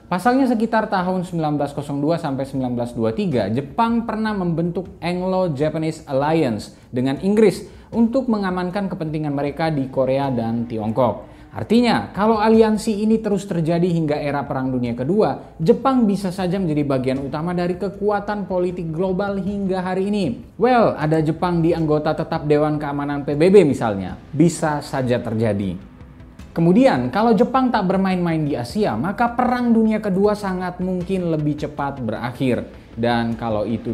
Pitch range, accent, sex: 135-200 Hz, native, male